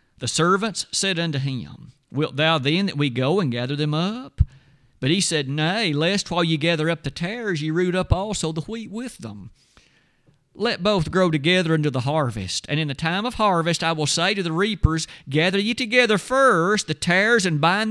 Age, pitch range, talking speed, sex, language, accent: 50-69, 140-200 Hz, 205 wpm, male, English, American